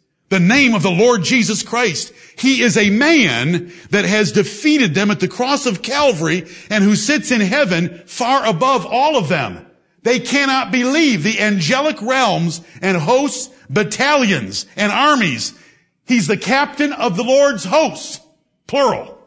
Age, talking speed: 50-69, 155 wpm